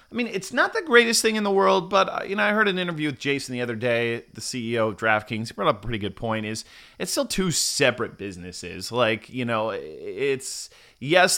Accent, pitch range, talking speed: American, 110-140 Hz, 230 wpm